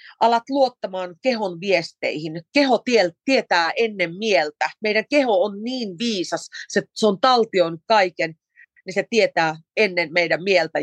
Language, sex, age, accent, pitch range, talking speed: Finnish, female, 30-49, native, 175-235 Hz, 125 wpm